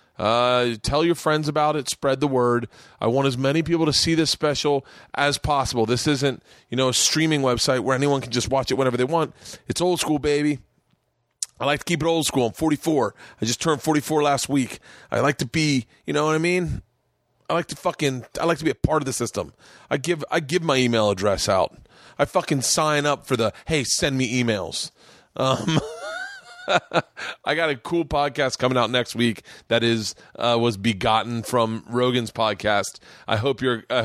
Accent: American